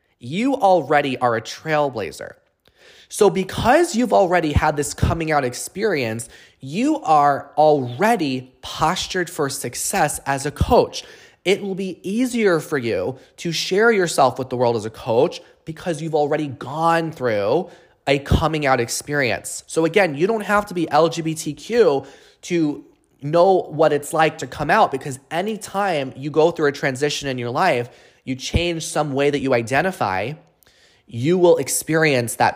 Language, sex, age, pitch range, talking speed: English, male, 20-39, 130-190 Hz, 155 wpm